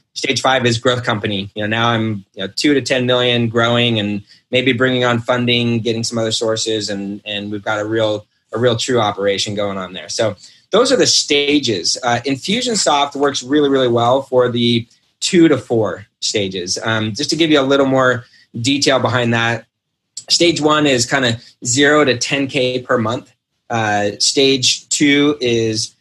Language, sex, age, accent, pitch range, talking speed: English, male, 20-39, American, 110-130 Hz, 185 wpm